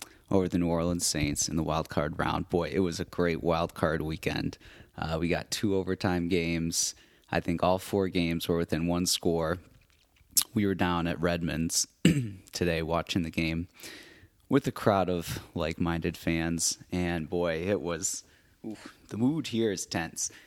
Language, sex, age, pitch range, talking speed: English, male, 30-49, 85-100 Hz, 175 wpm